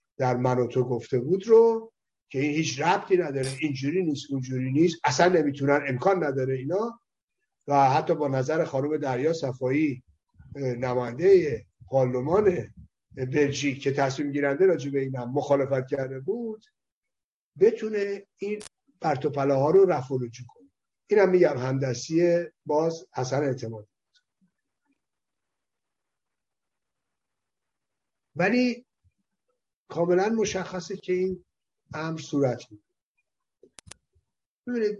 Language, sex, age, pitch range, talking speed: Persian, male, 50-69, 130-185 Hz, 110 wpm